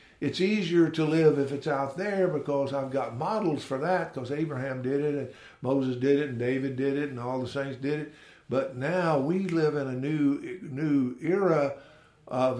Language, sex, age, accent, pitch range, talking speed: English, male, 60-79, American, 125-155 Hz, 200 wpm